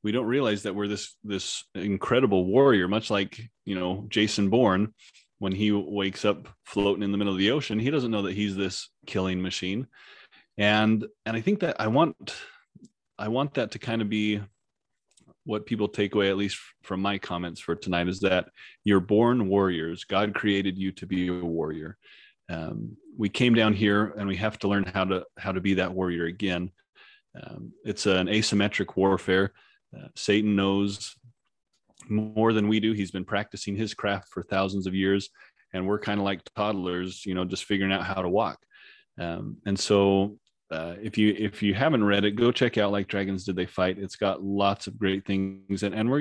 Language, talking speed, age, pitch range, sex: English, 195 wpm, 30-49, 95-105 Hz, male